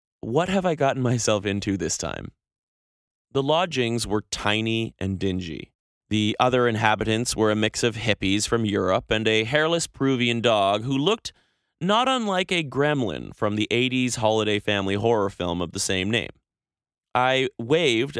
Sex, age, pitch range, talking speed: male, 30-49, 100-135 Hz, 160 wpm